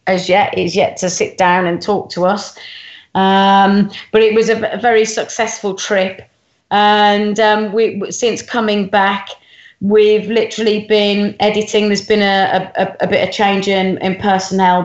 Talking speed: 160 wpm